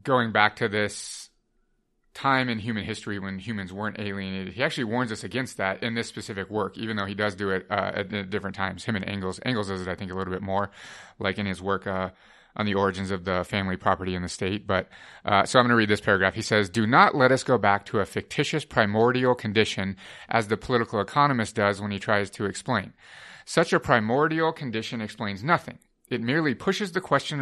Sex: male